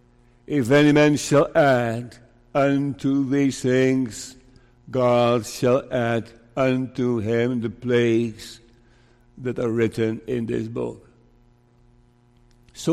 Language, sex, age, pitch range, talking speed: English, male, 60-79, 120-160 Hz, 100 wpm